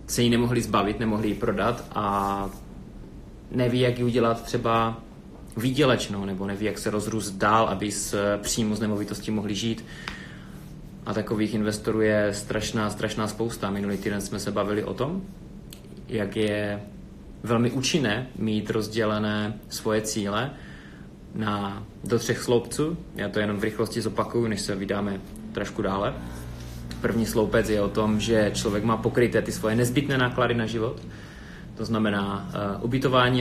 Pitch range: 100-115 Hz